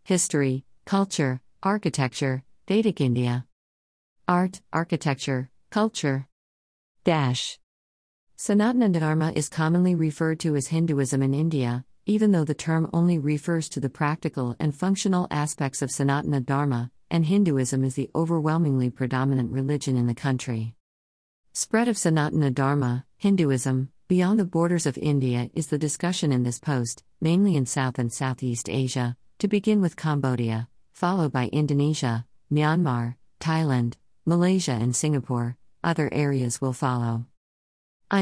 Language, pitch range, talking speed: English, 125-160 Hz, 130 wpm